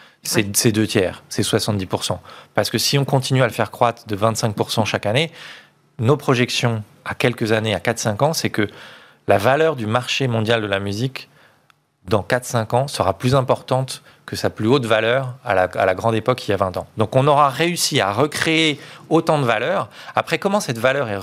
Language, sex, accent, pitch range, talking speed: French, male, French, 110-145 Hz, 205 wpm